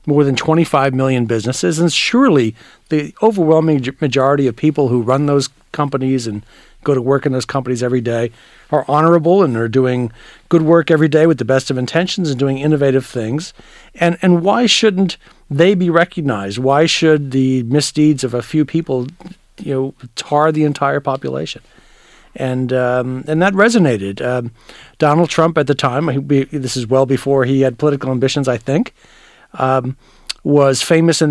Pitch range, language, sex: 130-160 Hz, English, male